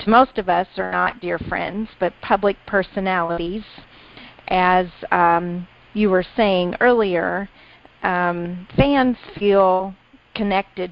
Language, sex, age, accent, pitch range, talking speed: English, female, 40-59, American, 180-205 Hz, 110 wpm